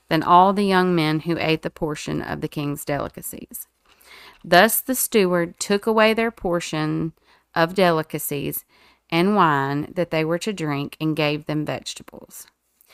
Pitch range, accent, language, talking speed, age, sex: 155-185 Hz, American, English, 155 wpm, 40-59, female